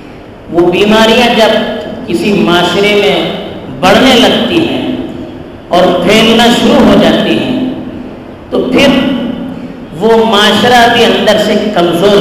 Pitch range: 210-250 Hz